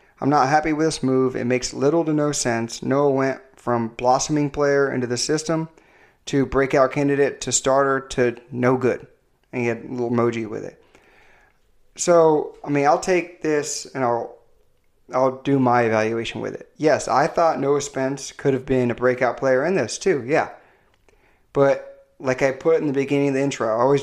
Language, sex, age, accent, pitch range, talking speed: English, male, 30-49, American, 125-155 Hz, 190 wpm